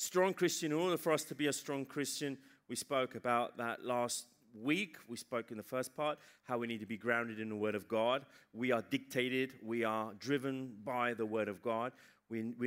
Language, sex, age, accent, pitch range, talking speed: Italian, male, 30-49, British, 120-160 Hz, 220 wpm